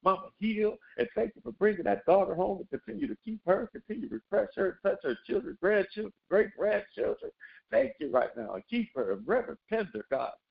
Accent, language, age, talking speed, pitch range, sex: American, English, 50-69, 195 wpm, 190-230 Hz, male